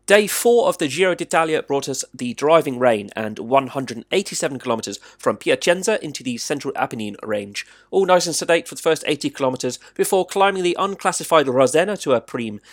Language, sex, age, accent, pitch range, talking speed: English, male, 30-49, British, 120-185 Hz, 180 wpm